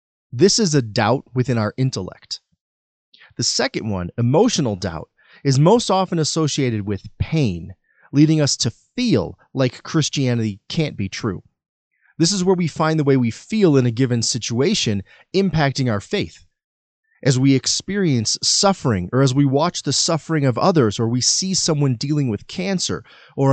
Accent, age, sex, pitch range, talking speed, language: American, 30-49, male, 120-170 Hz, 160 wpm, English